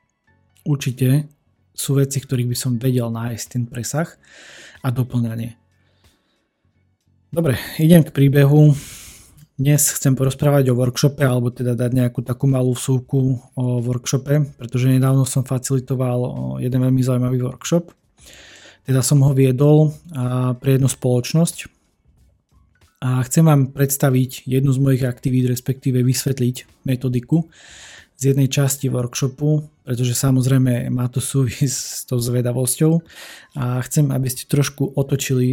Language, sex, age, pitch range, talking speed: Slovak, male, 20-39, 125-140 Hz, 125 wpm